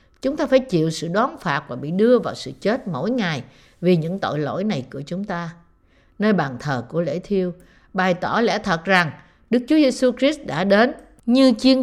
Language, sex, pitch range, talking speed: Vietnamese, female, 150-230 Hz, 215 wpm